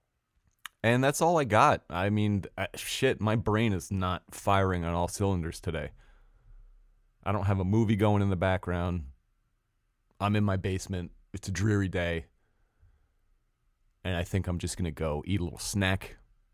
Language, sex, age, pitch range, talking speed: English, male, 30-49, 85-105 Hz, 165 wpm